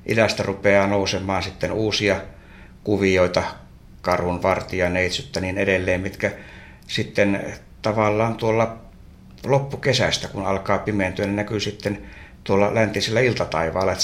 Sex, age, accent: male, 60-79, native